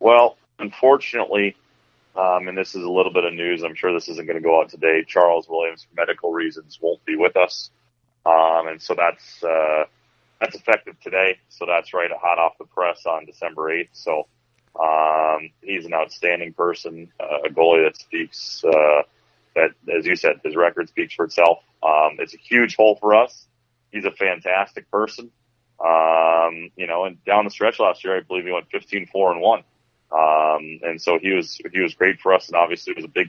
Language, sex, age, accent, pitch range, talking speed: English, male, 30-49, American, 80-120 Hz, 200 wpm